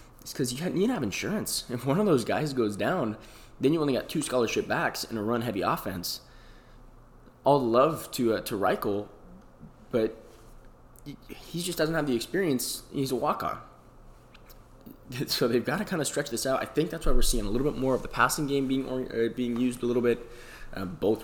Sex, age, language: male, 20-39, English